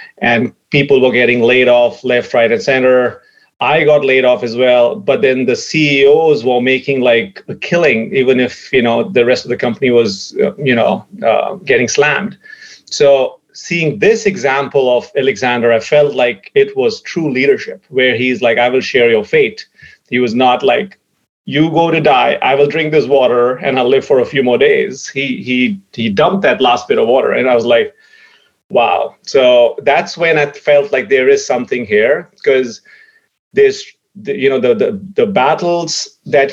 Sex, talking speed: male, 190 wpm